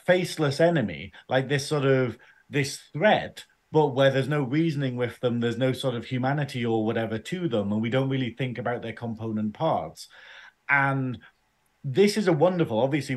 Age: 40-59